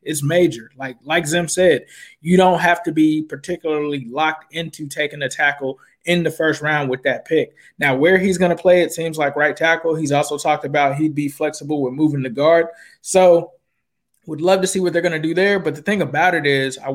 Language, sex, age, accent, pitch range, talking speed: English, male, 20-39, American, 140-170 Hz, 225 wpm